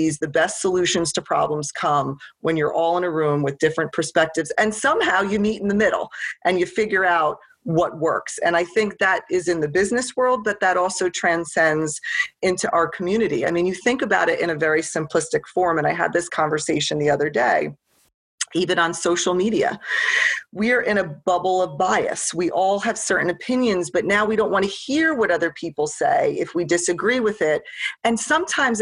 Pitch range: 175-225 Hz